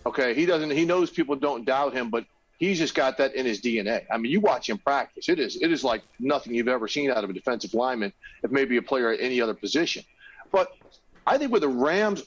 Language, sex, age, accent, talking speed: English, male, 40-59, American, 250 wpm